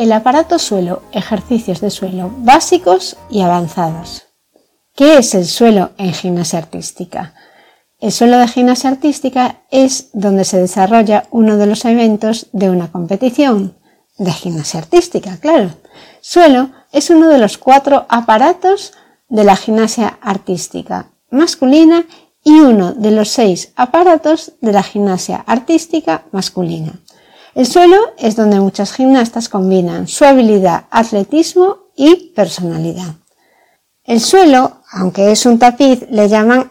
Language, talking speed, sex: Spanish, 130 wpm, female